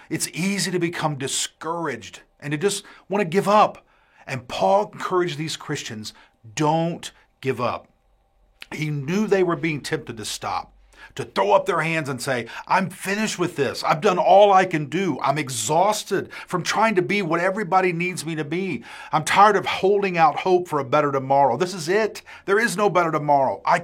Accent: American